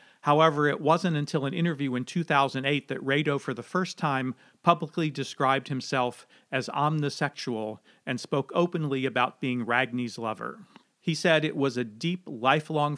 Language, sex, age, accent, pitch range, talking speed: English, male, 40-59, American, 125-160 Hz, 155 wpm